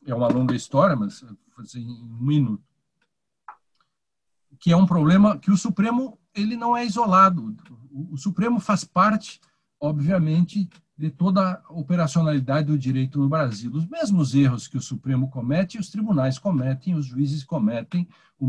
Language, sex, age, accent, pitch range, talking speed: Portuguese, male, 60-79, Brazilian, 140-190 Hz, 155 wpm